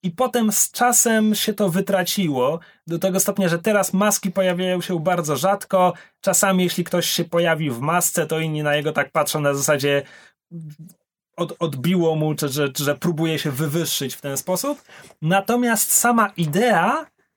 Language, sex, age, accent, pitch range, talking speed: Polish, male, 30-49, native, 145-195 Hz, 160 wpm